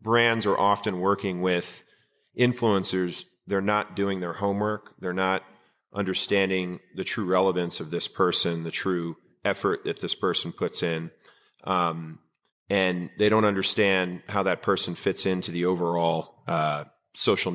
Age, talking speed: 40-59, 145 wpm